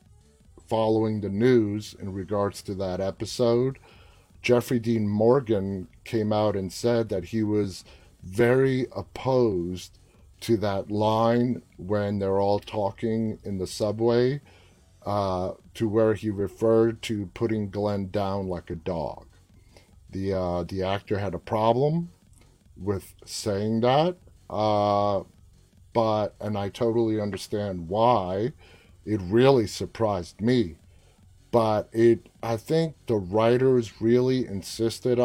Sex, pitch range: male, 95-115 Hz